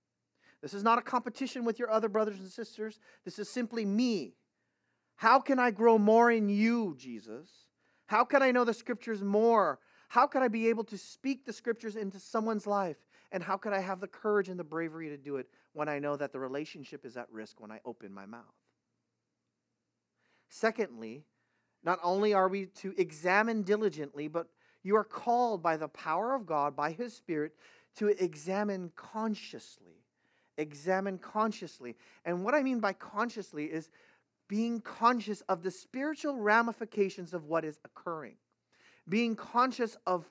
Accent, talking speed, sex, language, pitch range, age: American, 170 wpm, male, English, 180-235 Hz, 40-59